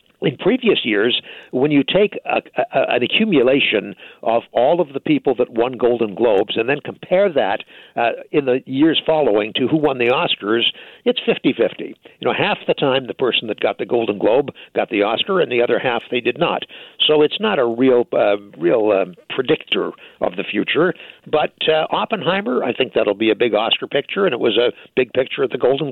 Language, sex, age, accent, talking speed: English, male, 60-79, American, 205 wpm